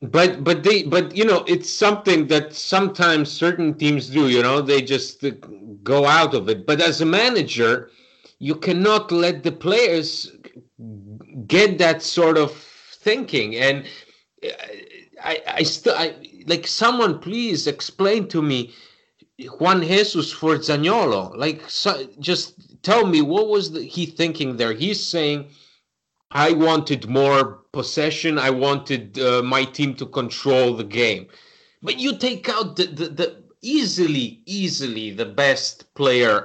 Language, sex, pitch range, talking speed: English, male, 135-185 Hz, 145 wpm